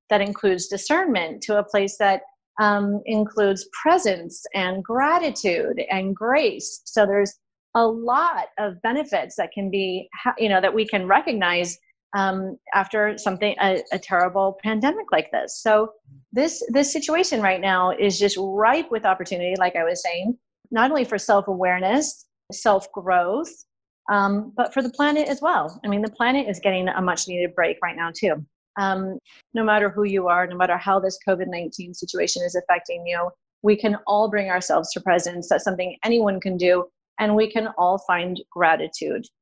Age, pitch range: 30-49, 180-225 Hz